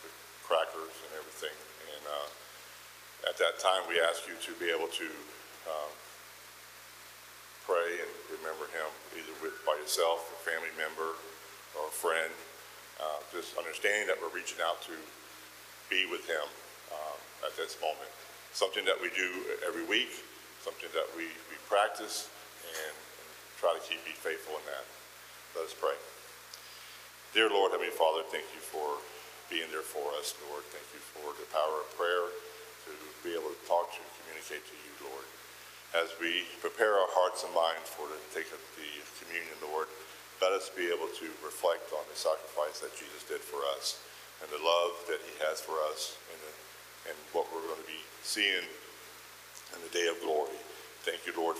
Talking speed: 175 wpm